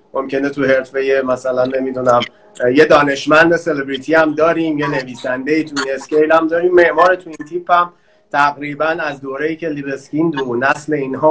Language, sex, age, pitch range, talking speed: Persian, male, 30-49, 135-175 Hz, 155 wpm